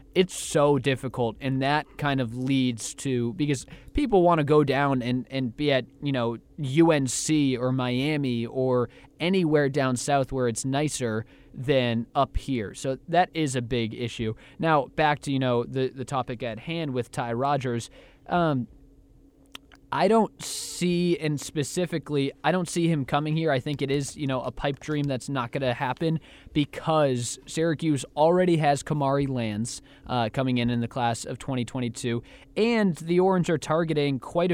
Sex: male